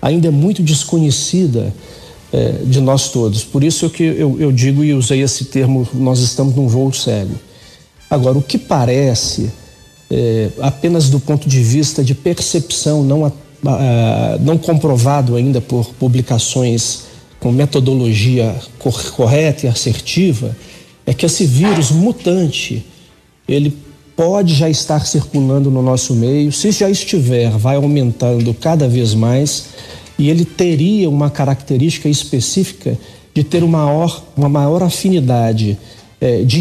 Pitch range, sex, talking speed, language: 125-165 Hz, male, 130 wpm, Portuguese